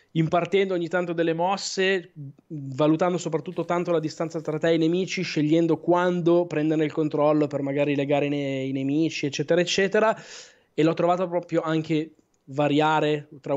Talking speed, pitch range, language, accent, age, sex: 160 wpm, 140-170 Hz, Italian, native, 20-39, male